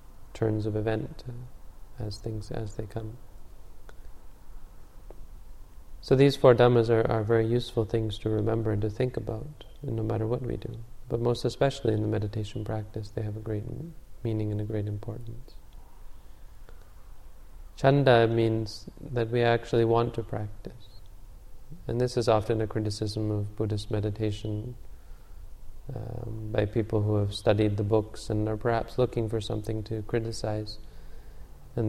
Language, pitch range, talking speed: English, 105-115 Hz, 145 wpm